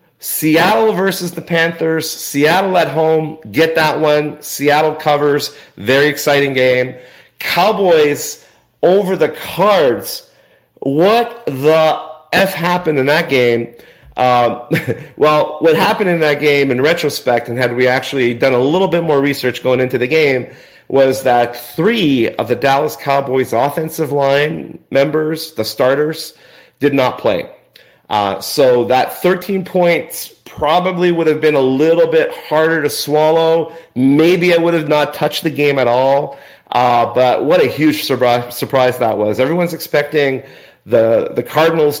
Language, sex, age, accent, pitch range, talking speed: English, male, 40-59, American, 125-160 Hz, 145 wpm